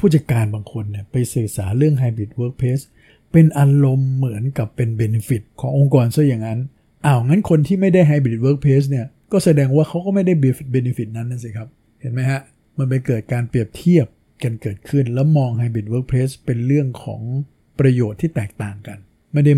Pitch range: 115-145 Hz